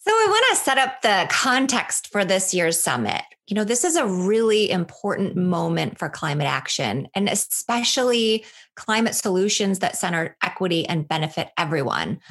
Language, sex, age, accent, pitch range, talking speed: English, female, 30-49, American, 170-210 Hz, 155 wpm